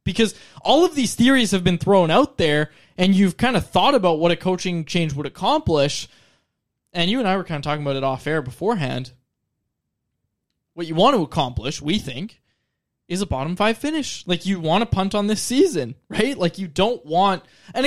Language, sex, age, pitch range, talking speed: English, male, 20-39, 155-215 Hz, 205 wpm